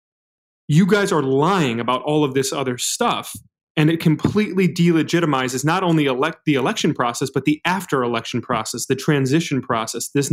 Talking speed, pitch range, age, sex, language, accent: 165 wpm, 135-170 Hz, 30-49, male, English, American